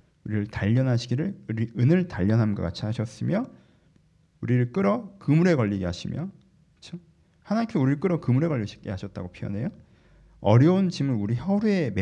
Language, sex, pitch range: Korean, male, 110-155 Hz